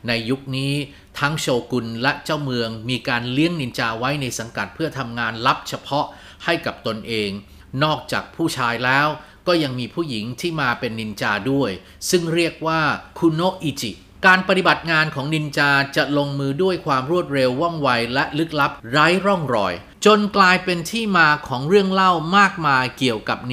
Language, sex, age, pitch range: Thai, male, 30-49, 120-160 Hz